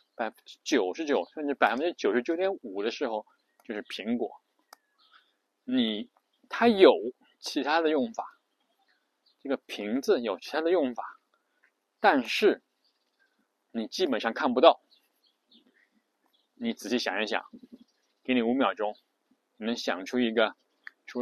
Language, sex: Chinese, male